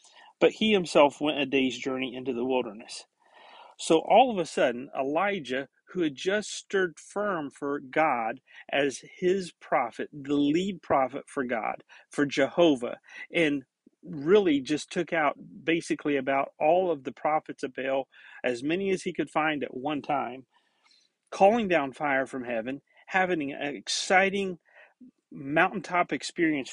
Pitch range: 140-195 Hz